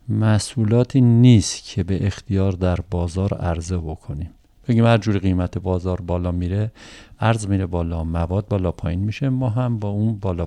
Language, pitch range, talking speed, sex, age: Persian, 95-120 Hz, 155 wpm, male, 50-69